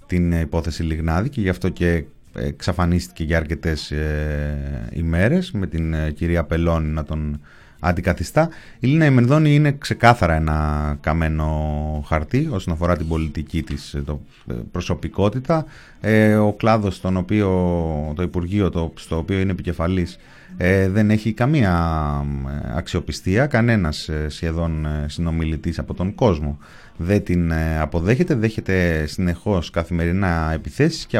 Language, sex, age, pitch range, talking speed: Greek, male, 30-49, 80-110 Hz, 135 wpm